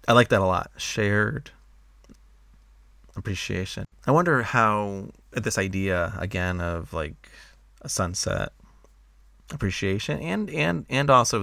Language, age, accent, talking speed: English, 30-49, American, 115 wpm